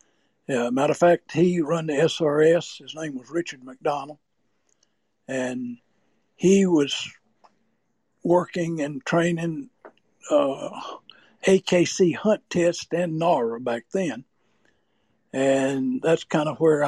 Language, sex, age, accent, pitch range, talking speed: English, male, 60-79, American, 145-190 Hz, 115 wpm